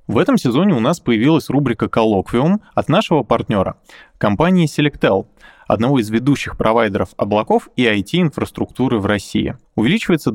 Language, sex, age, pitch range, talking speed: Russian, male, 20-39, 110-160 Hz, 135 wpm